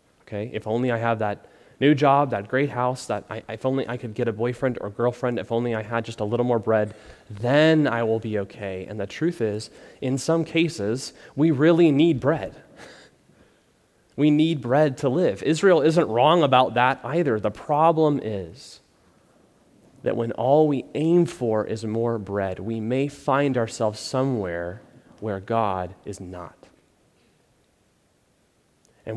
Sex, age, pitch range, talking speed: male, 30-49, 105-135 Hz, 160 wpm